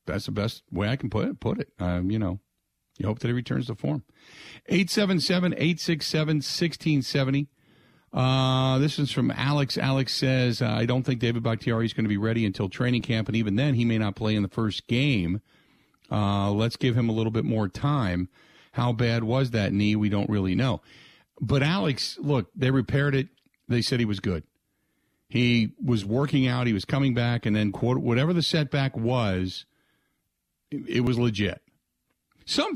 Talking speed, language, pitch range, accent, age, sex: 185 wpm, English, 110-145 Hz, American, 50-69, male